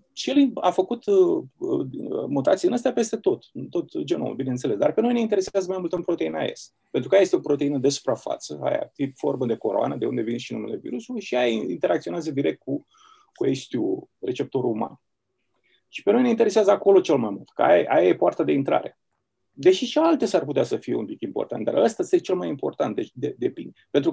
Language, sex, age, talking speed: Romanian, male, 30-49, 220 wpm